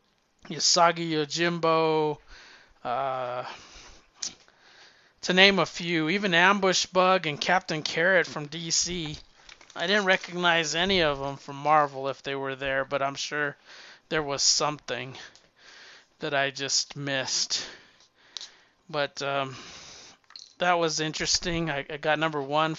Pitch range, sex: 140-160 Hz, male